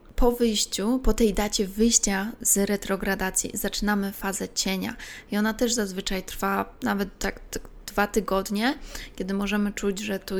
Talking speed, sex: 145 wpm, female